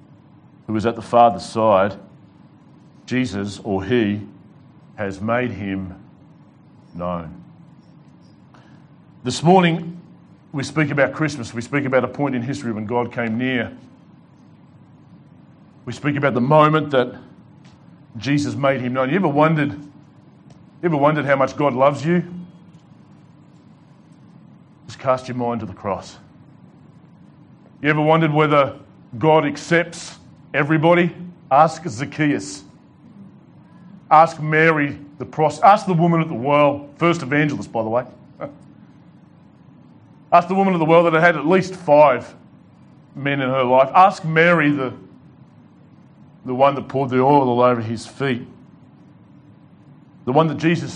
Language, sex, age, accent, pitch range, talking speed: English, male, 40-59, Australian, 125-160 Hz, 135 wpm